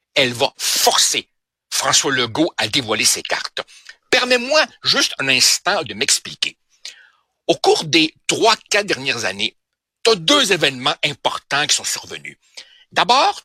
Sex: male